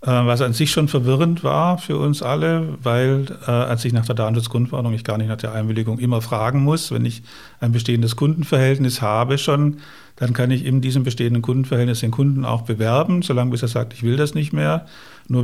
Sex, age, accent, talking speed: male, 50-69, German, 205 wpm